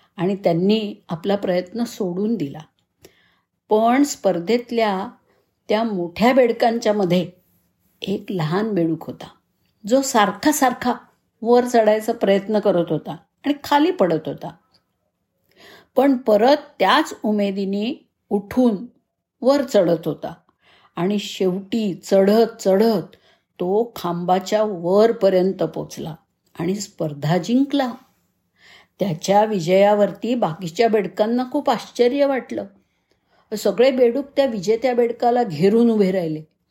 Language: Marathi